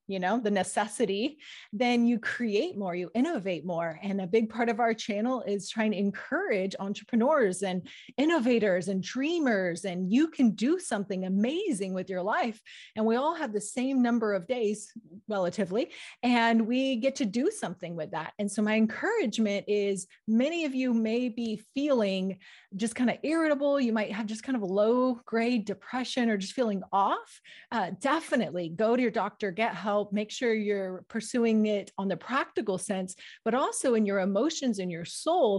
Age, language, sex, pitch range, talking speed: 30-49, English, female, 195-250 Hz, 180 wpm